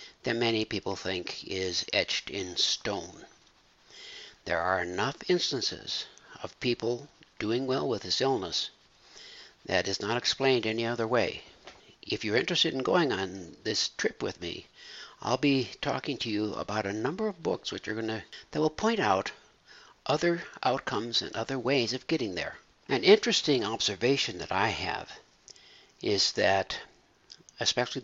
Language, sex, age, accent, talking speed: English, male, 60-79, American, 150 wpm